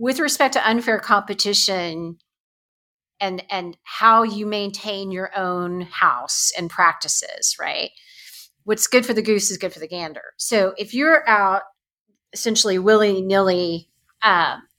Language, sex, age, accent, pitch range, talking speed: English, female, 40-59, American, 175-210 Hz, 140 wpm